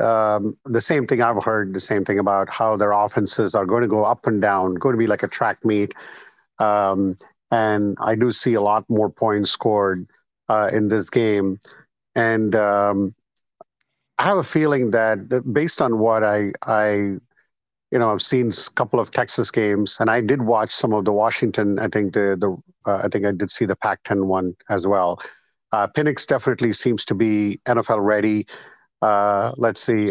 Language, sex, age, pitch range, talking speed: English, male, 50-69, 100-115 Hz, 195 wpm